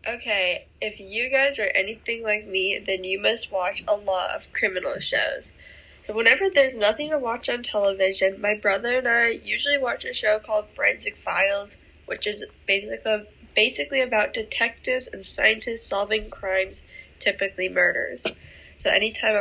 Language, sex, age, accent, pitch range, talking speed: English, female, 10-29, American, 195-235 Hz, 155 wpm